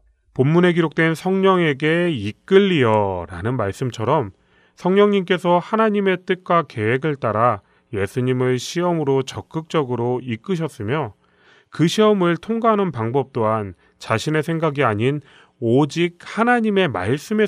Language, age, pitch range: Korean, 30-49, 105-165 Hz